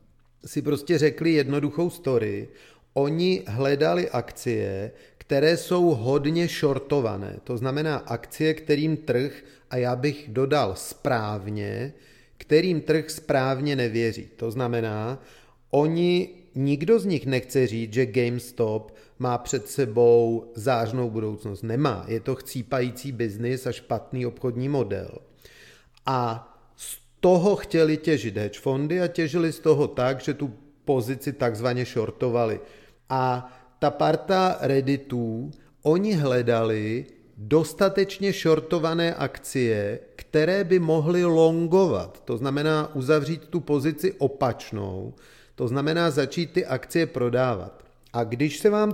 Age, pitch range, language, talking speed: 40-59, 120-155 Hz, Czech, 115 wpm